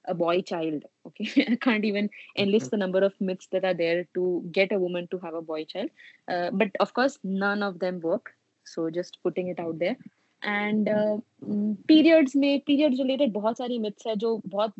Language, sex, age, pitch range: Hindi, female, 20-39, 180-215 Hz